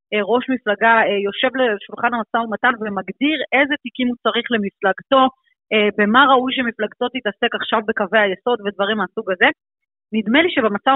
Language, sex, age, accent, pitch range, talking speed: Hebrew, female, 30-49, native, 215-245 Hz, 135 wpm